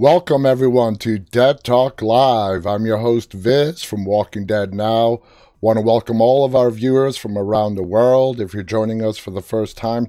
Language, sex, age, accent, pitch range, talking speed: English, male, 30-49, American, 105-125 Hz, 195 wpm